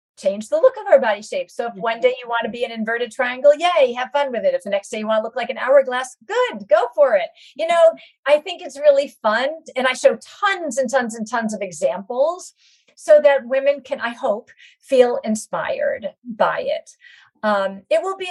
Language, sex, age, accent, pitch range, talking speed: English, female, 50-69, American, 205-285 Hz, 225 wpm